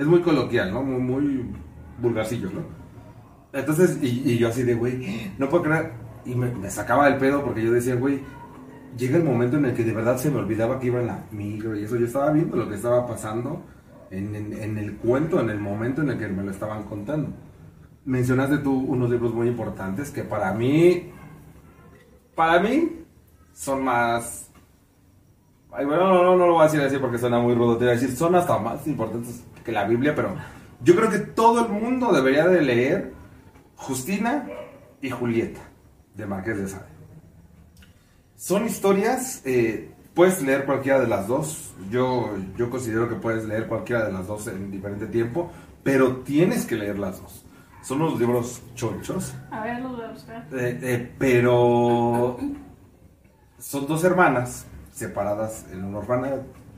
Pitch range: 110-145 Hz